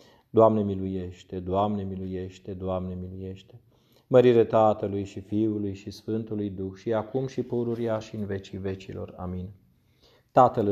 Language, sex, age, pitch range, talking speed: Romanian, male, 30-49, 100-120 Hz, 130 wpm